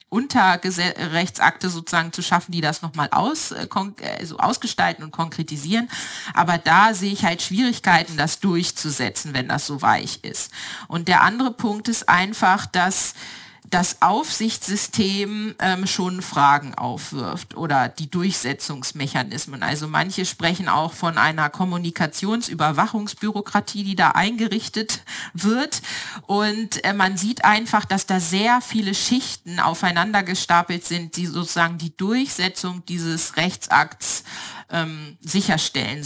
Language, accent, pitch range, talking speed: German, German, 165-200 Hz, 125 wpm